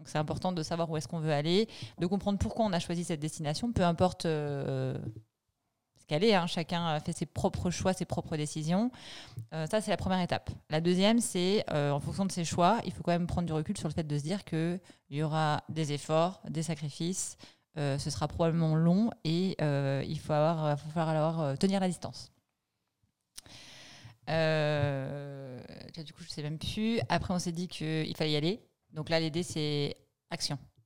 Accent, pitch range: French, 145-175 Hz